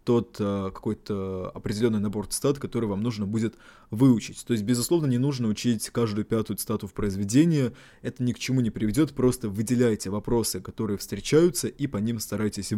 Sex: male